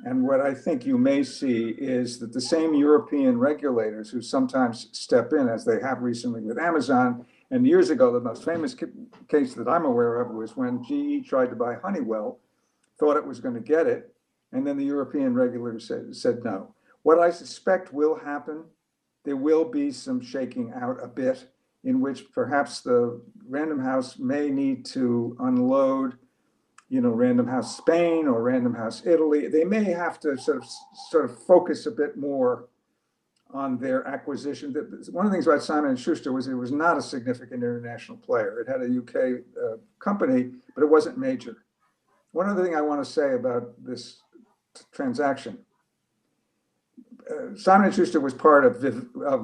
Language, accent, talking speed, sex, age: English, American, 180 wpm, male, 60-79